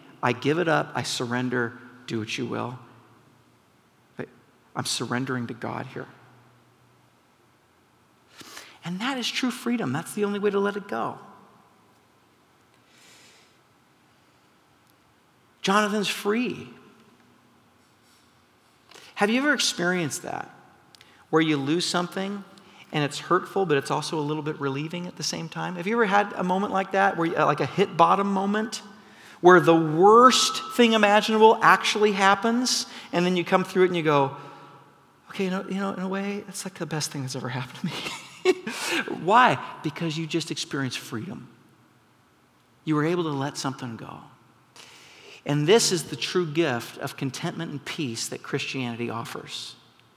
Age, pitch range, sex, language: 50-69, 135-195 Hz, male, English